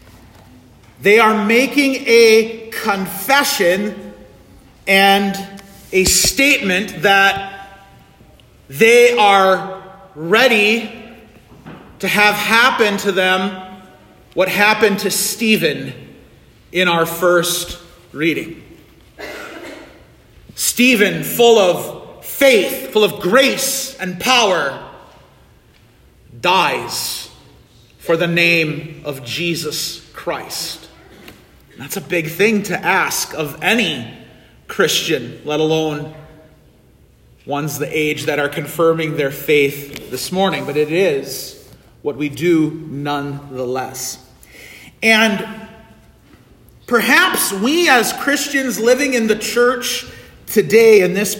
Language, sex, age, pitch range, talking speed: English, male, 40-59, 155-230 Hz, 95 wpm